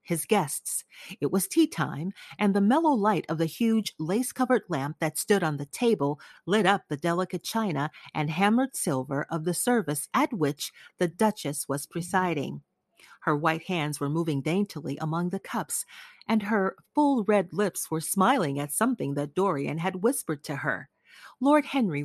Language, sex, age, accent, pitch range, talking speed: English, female, 40-59, American, 155-225 Hz, 170 wpm